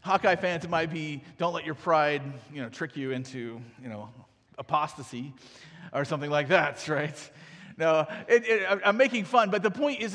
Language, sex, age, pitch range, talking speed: English, male, 40-59, 155-205 Hz, 175 wpm